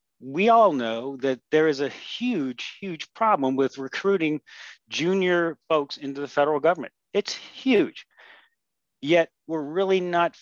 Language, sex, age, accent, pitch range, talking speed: English, male, 40-59, American, 140-180 Hz, 140 wpm